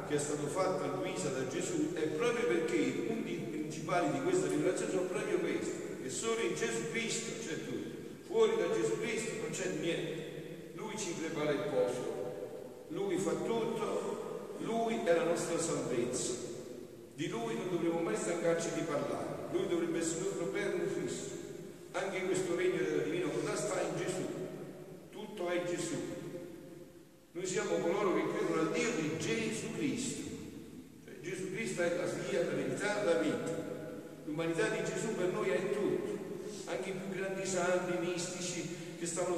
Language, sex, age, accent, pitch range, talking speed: Italian, male, 50-69, native, 170-200 Hz, 165 wpm